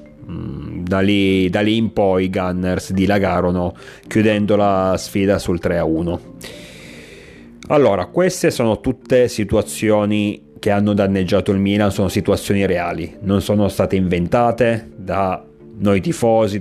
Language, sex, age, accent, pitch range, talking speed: Italian, male, 30-49, native, 85-110 Hz, 125 wpm